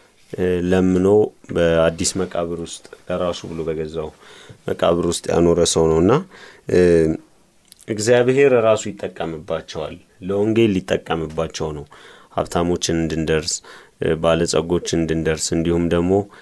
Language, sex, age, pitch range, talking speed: Amharic, male, 30-49, 85-100 Hz, 75 wpm